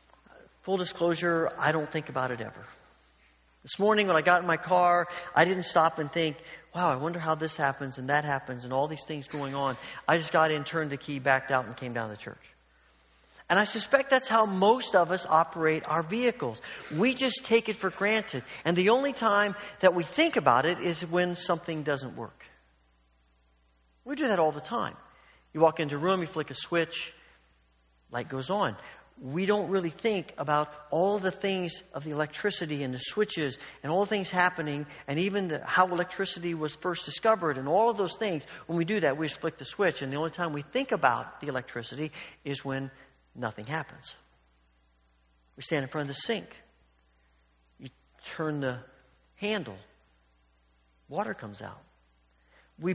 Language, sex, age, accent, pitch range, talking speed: English, male, 40-59, American, 130-180 Hz, 190 wpm